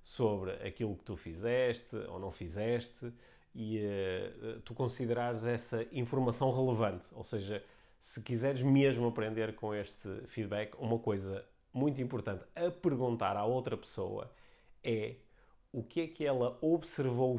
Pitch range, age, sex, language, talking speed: 105-125 Hz, 30-49, male, Portuguese, 135 wpm